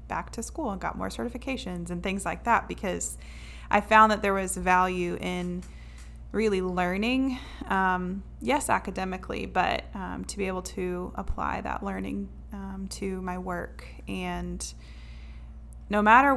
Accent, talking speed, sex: American, 145 wpm, female